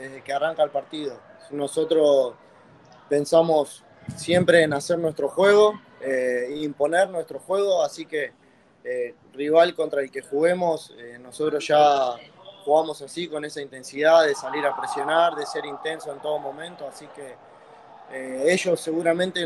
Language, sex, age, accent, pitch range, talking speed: Spanish, male, 20-39, Argentinian, 135-165 Hz, 145 wpm